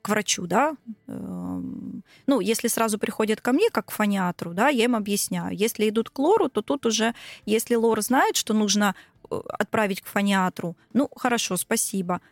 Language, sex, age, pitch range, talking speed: Russian, female, 20-39, 205-255 Hz, 165 wpm